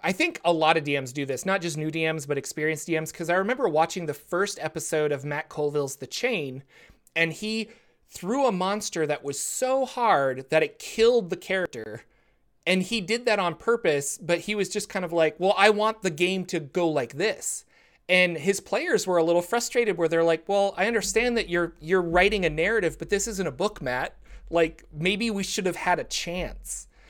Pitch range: 155-195 Hz